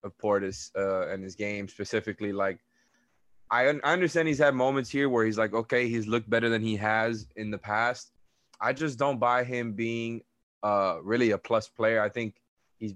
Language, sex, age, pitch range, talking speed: English, male, 20-39, 105-120 Hz, 200 wpm